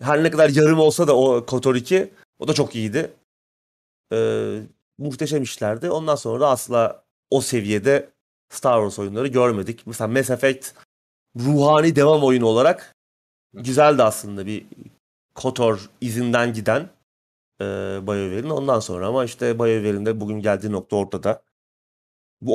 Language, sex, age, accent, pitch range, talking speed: Turkish, male, 30-49, native, 105-140 Hz, 130 wpm